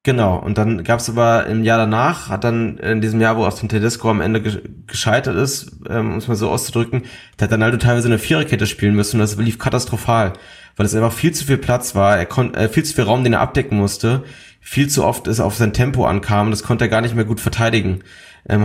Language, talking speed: German, 255 wpm